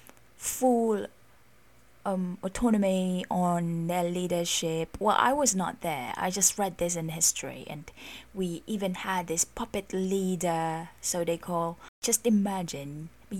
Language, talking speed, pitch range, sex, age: English, 130 wpm, 165-205 Hz, female, 20-39